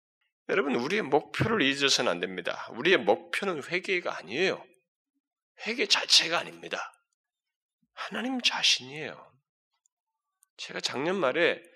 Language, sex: Korean, male